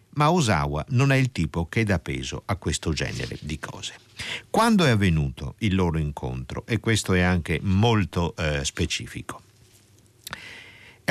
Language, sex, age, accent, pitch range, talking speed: Italian, male, 50-69, native, 80-110 Hz, 150 wpm